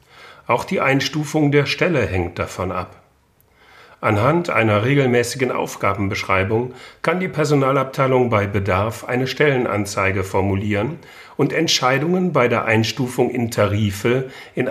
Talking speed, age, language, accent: 115 wpm, 40-59, German, German